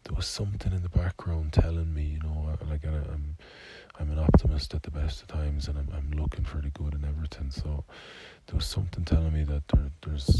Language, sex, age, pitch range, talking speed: English, male, 20-39, 70-85 Hz, 220 wpm